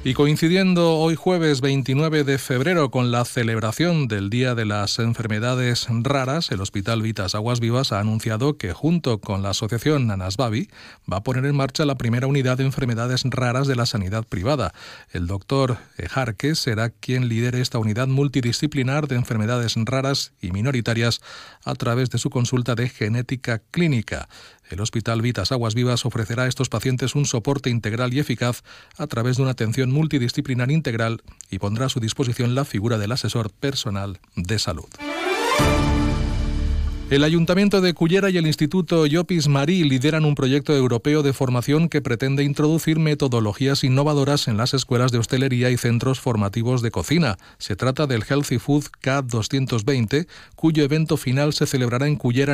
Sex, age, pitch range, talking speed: male, 40-59, 115-140 Hz, 160 wpm